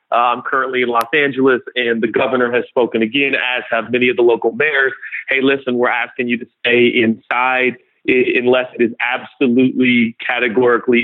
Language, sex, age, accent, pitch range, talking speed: English, male, 40-59, American, 120-145 Hz, 180 wpm